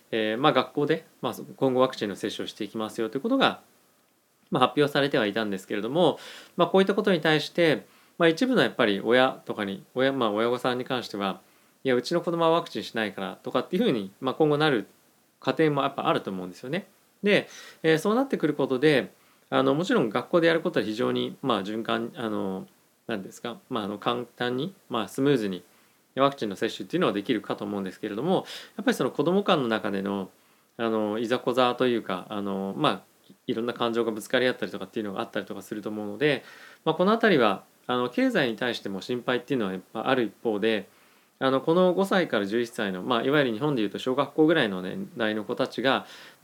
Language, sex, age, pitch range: Japanese, male, 20-39, 110-155 Hz